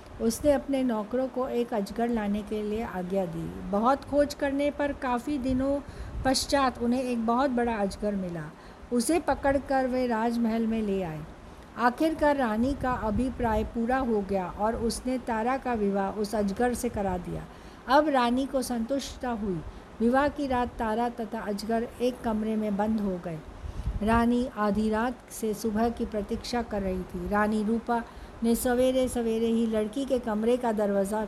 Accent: native